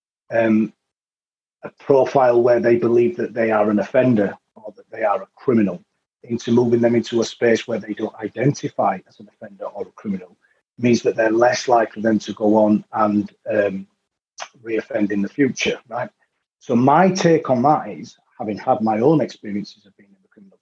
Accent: British